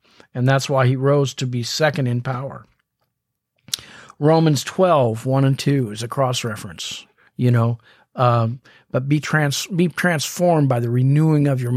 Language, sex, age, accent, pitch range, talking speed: English, male, 50-69, American, 125-160 Hz, 165 wpm